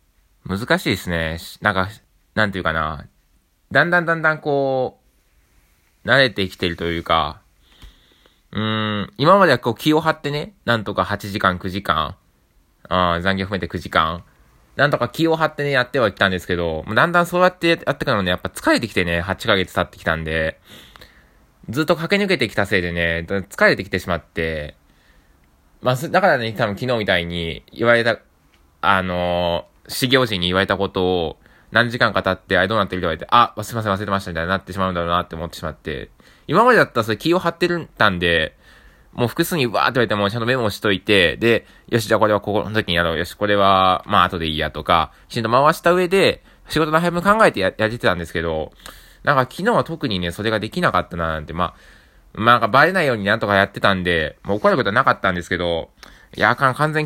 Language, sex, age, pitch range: Japanese, male, 20-39, 85-120 Hz